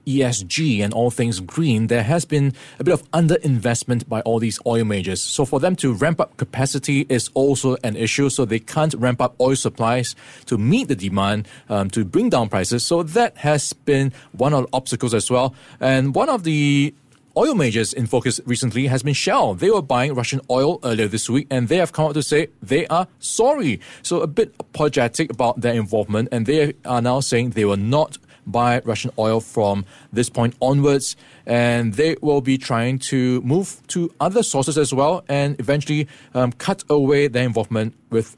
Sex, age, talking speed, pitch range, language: male, 20-39, 195 wpm, 115-145 Hz, English